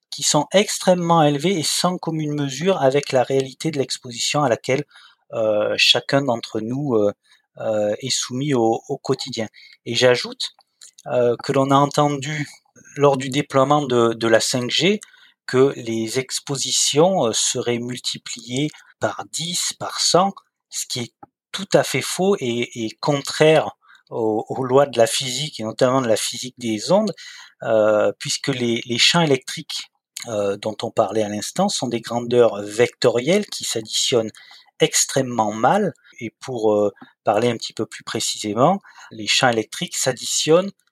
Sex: male